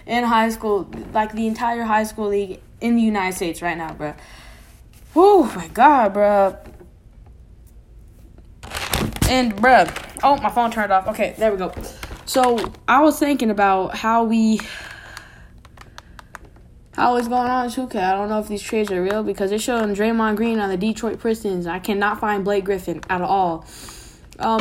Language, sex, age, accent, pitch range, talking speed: English, female, 10-29, American, 195-235 Hz, 170 wpm